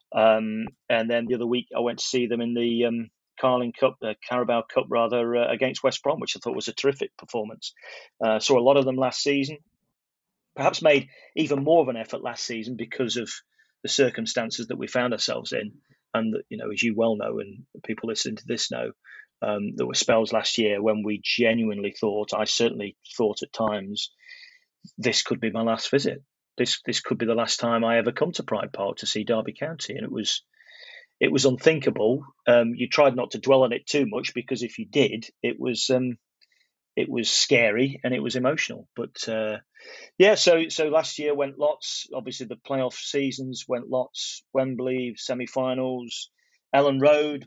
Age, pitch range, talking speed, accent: 30-49, 115-140 Hz, 200 wpm, British